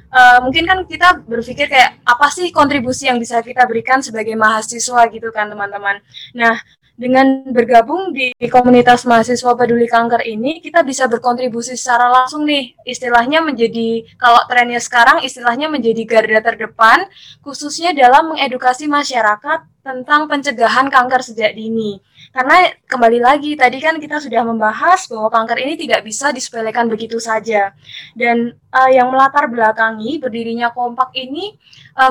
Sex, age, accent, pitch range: female, 20-39, native, 230-285 Hz